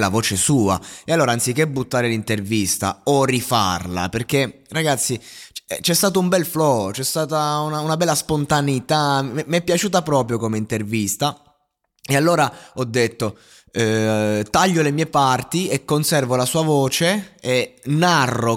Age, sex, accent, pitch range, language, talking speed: 20-39, male, native, 110-145 Hz, Italian, 145 wpm